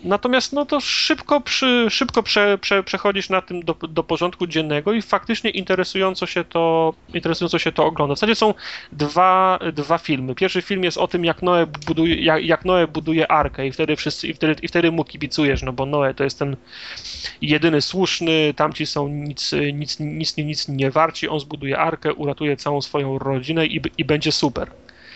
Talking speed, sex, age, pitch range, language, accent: 190 wpm, male, 30-49, 145-170 Hz, Polish, native